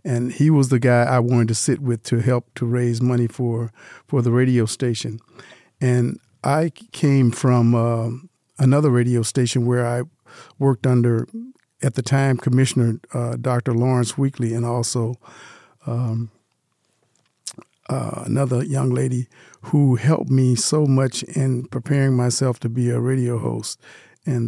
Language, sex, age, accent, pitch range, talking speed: English, male, 50-69, American, 120-135 Hz, 150 wpm